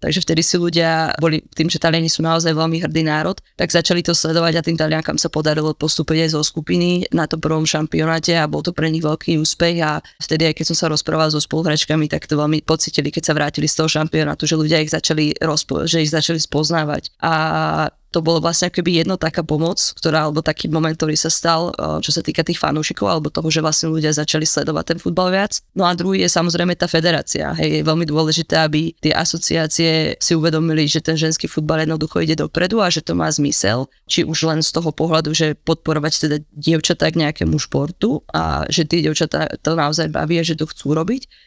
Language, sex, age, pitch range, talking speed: Slovak, female, 20-39, 155-165 Hz, 215 wpm